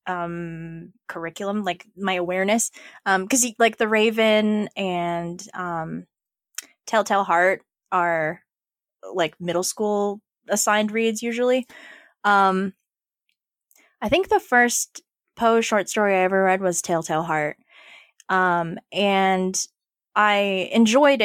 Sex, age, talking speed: female, 20-39, 110 wpm